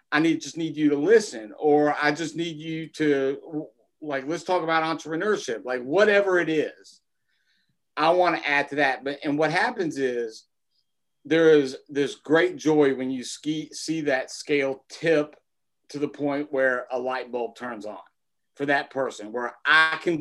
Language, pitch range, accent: English, 135-175 Hz, American